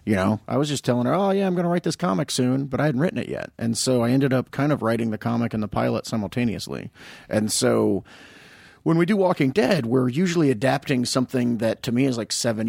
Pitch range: 105-125 Hz